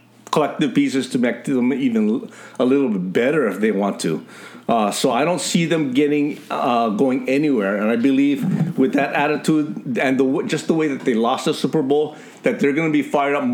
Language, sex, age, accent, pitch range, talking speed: English, male, 50-69, American, 135-215 Hz, 220 wpm